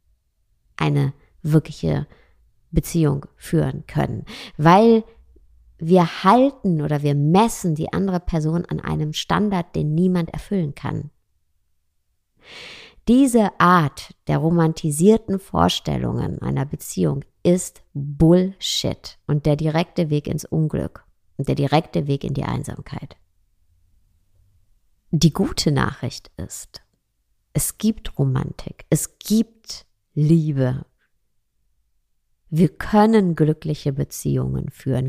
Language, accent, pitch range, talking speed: German, German, 115-170 Hz, 100 wpm